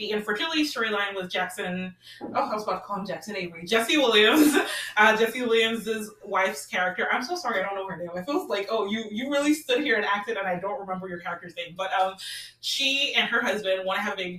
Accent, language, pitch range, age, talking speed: American, English, 180-220 Hz, 20-39, 240 wpm